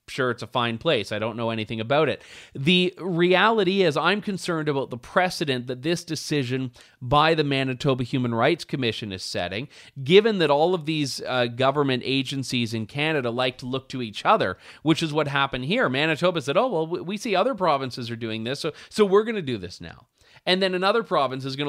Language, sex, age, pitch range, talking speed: English, male, 30-49, 130-180 Hz, 210 wpm